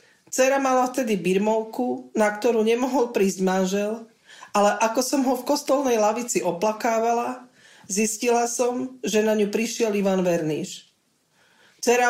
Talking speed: 130 wpm